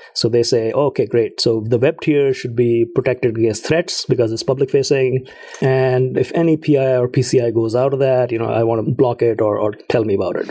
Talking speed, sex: 240 wpm, male